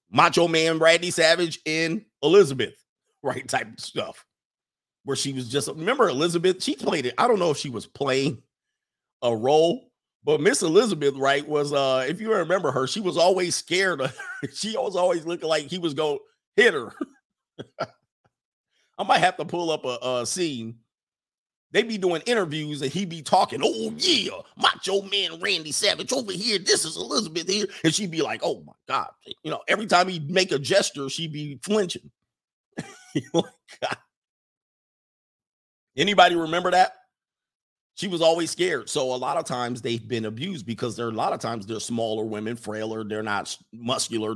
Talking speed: 175 wpm